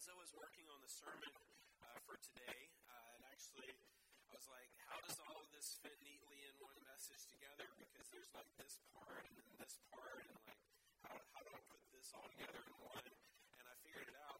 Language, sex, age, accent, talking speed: English, male, 30-49, American, 215 wpm